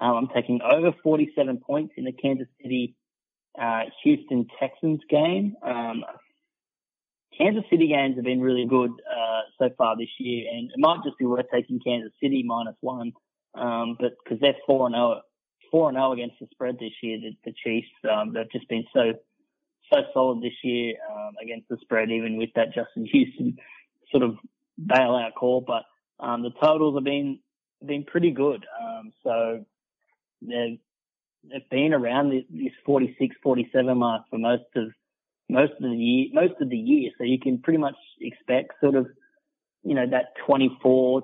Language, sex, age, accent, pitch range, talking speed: English, male, 20-39, Australian, 120-150 Hz, 170 wpm